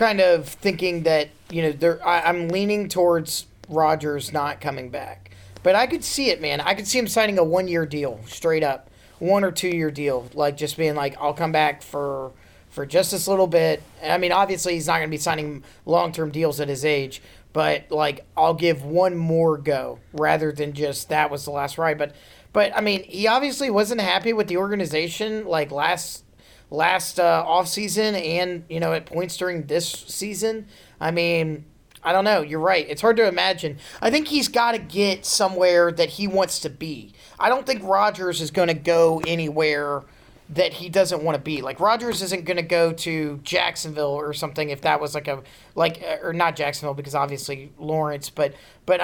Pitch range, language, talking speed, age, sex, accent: 150-185 Hz, English, 200 wpm, 30-49, male, American